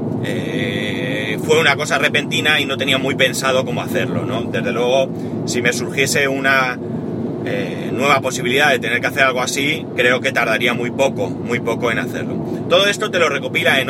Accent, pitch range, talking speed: Spanish, 120-140 Hz, 185 wpm